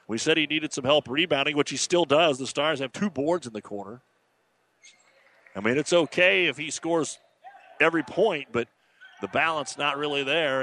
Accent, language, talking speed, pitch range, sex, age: American, English, 190 wpm, 130-160 Hz, male, 40-59